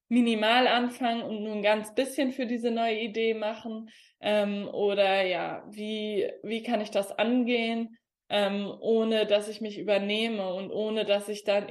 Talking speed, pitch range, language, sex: 165 wpm, 200-220 Hz, German, female